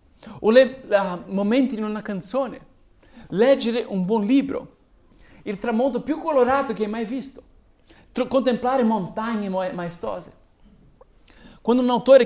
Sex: male